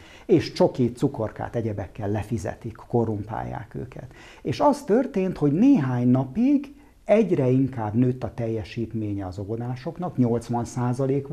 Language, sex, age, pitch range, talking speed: Hungarian, male, 50-69, 115-150 Hz, 110 wpm